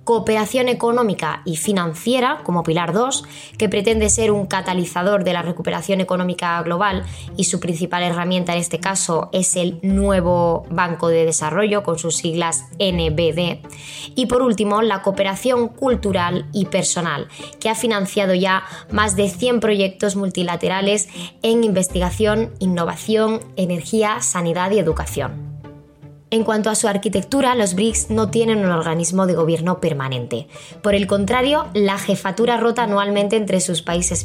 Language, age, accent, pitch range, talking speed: Spanish, 20-39, Spanish, 165-210 Hz, 145 wpm